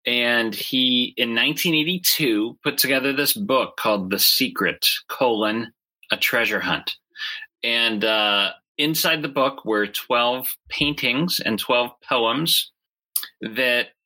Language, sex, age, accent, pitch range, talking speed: English, male, 30-49, American, 105-135 Hz, 115 wpm